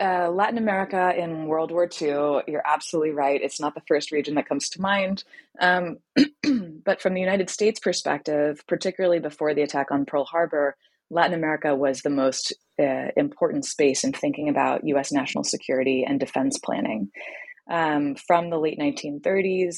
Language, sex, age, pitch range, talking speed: English, female, 20-39, 145-180 Hz, 165 wpm